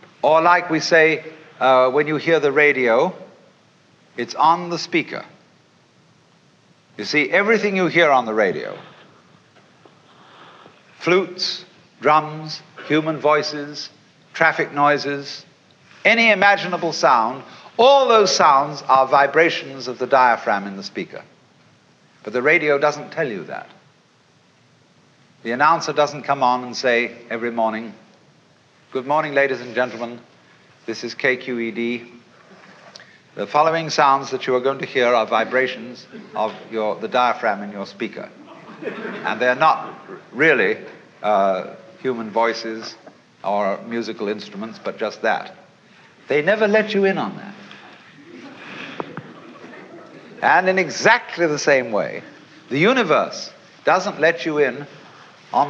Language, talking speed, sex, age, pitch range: English, 125 wpm, male, 60-79, 125-180 Hz